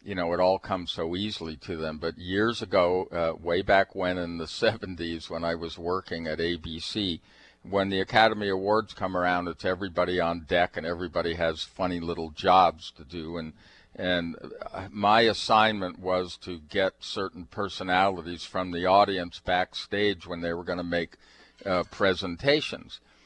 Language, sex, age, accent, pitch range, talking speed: English, male, 50-69, American, 85-105 Hz, 165 wpm